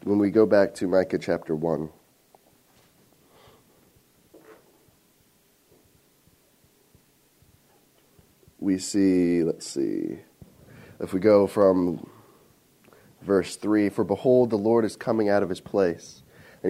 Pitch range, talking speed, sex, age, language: 85-110 Hz, 105 wpm, male, 30-49, English